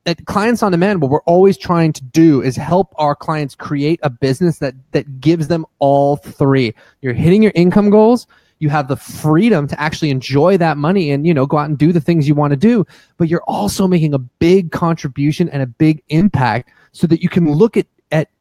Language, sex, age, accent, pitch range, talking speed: English, male, 20-39, American, 145-195 Hz, 220 wpm